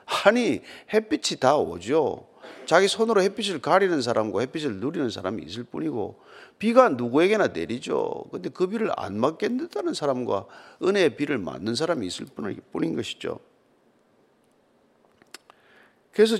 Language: Korean